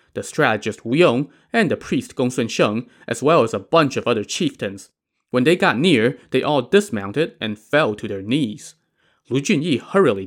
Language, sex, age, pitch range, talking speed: English, male, 20-39, 110-145 Hz, 185 wpm